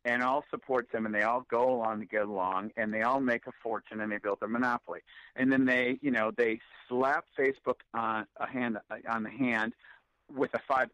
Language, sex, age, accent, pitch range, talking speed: English, male, 50-69, American, 110-130 Hz, 220 wpm